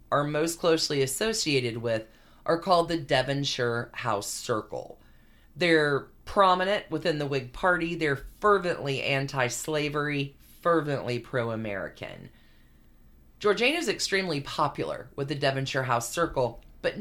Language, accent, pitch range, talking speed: English, American, 135-195 Hz, 115 wpm